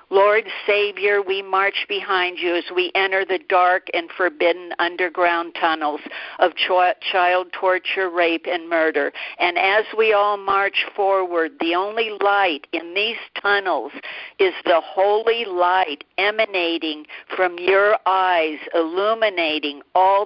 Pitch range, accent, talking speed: 175-215 Hz, American, 125 wpm